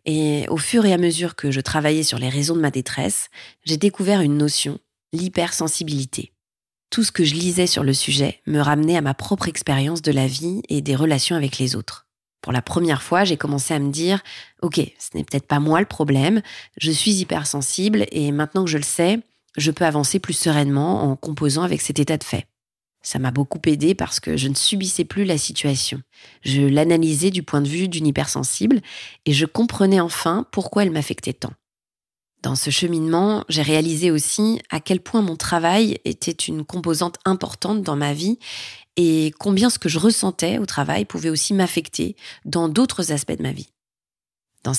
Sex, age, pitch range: female, 30-49, 145-185 Hz